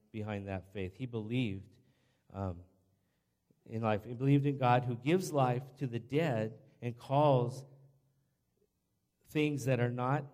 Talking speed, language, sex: 140 wpm, English, male